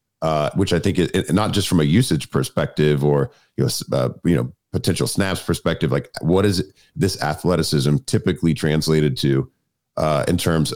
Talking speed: 185 wpm